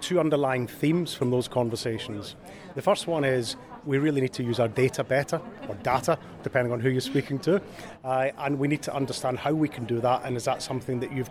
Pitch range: 120-145 Hz